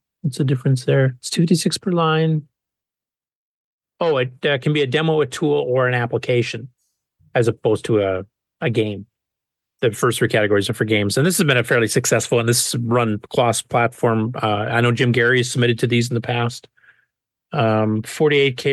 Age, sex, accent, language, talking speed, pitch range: 40-59, male, American, English, 190 wpm, 115-145 Hz